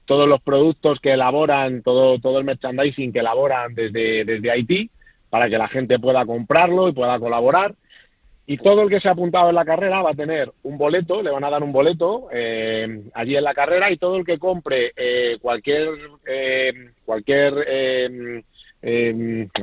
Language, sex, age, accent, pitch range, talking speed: Spanish, male, 40-59, Spanish, 125-155 Hz, 180 wpm